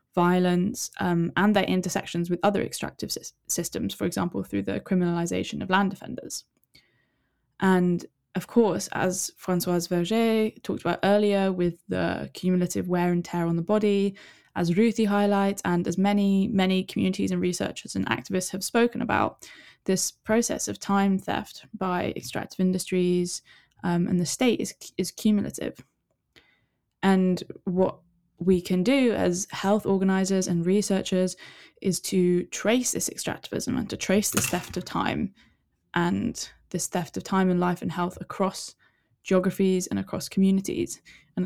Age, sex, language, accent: 10-29, female, English, British